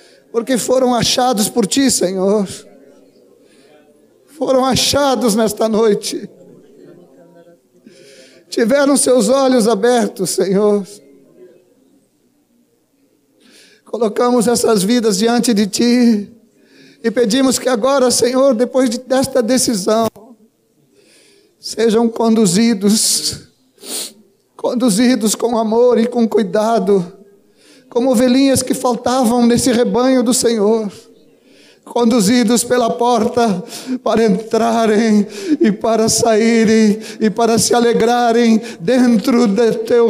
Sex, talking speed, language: male, 90 wpm, Portuguese